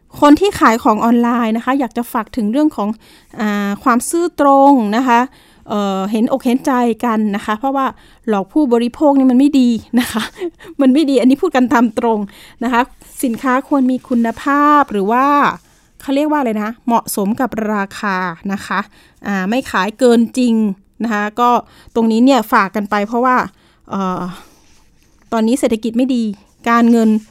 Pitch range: 215-265 Hz